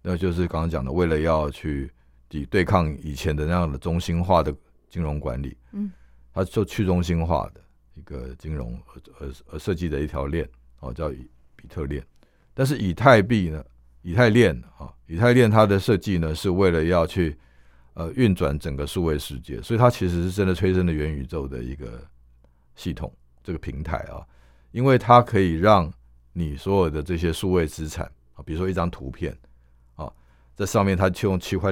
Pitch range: 70-95 Hz